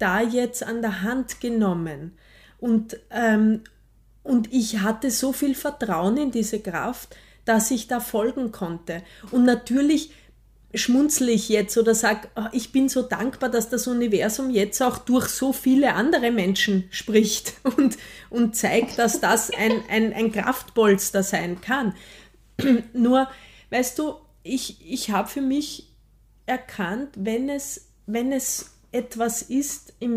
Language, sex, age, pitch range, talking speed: German, female, 30-49, 215-255 Hz, 140 wpm